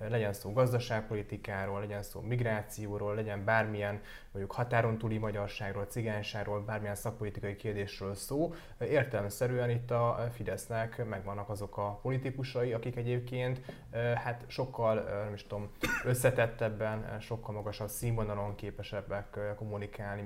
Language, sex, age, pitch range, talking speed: Hungarian, male, 20-39, 105-120 Hz, 115 wpm